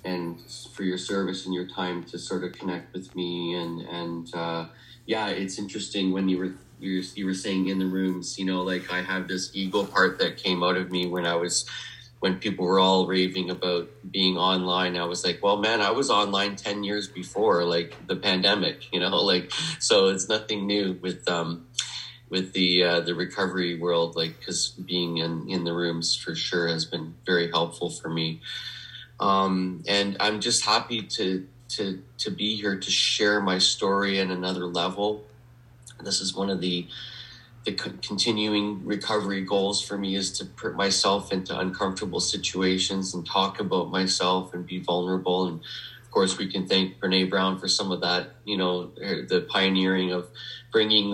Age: 30-49